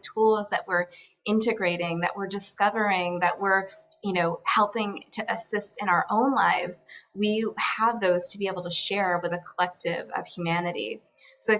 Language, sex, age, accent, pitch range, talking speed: English, female, 20-39, American, 180-205 Hz, 170 wpm